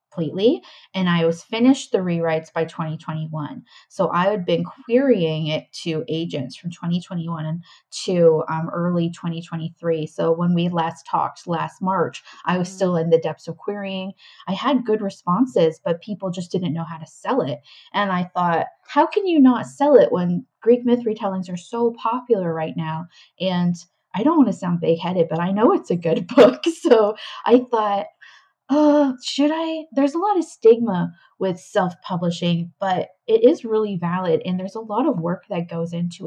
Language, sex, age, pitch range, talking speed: English, female, 20-39, 170-220 Hz, 185 wpm